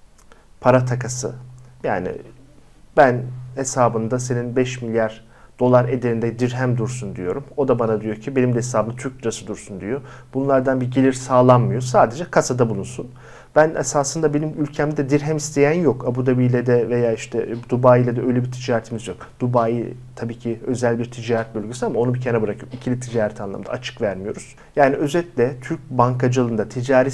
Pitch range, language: 120-135 Hz, Turkish